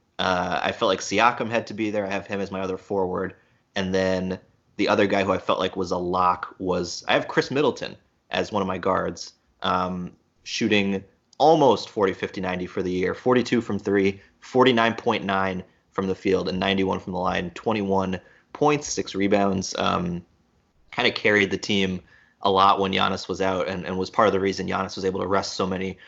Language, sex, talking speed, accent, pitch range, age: English, male, 205 wpm, American, 90-100 Hz, 30-49